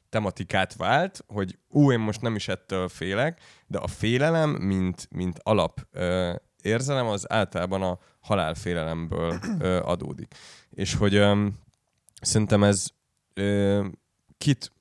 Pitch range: 90-110 Hz